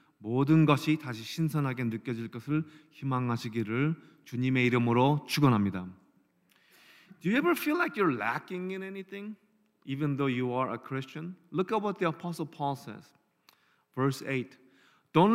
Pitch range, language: 135-180 Hz, Korean